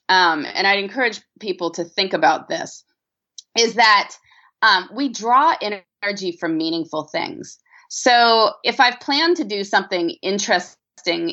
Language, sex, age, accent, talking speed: English, female, 30-49, American, 140 wpm